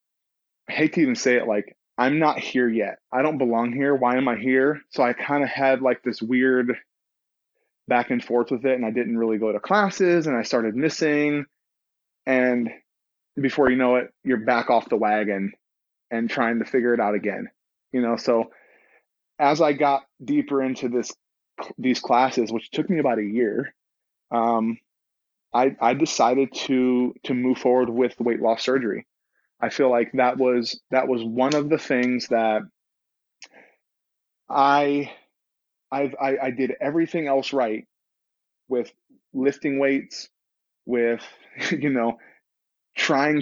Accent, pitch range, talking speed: American, 120-135 Hz, 160 wpm